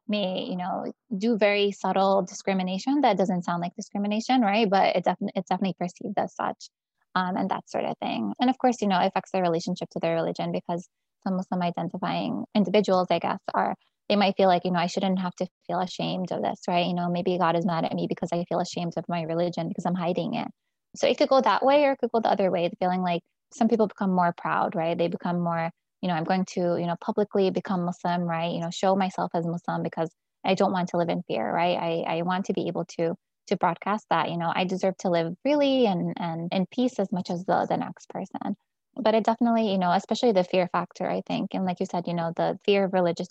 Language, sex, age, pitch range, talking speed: English, female, 20-39, 175-205 Hz, 250 wpm